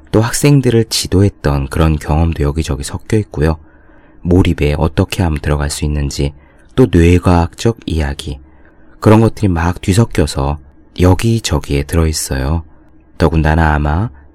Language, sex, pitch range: Korean, male, 75-95 Hz